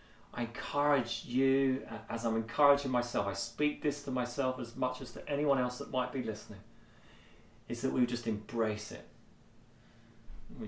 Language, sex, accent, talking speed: English, male, British, 170 wpm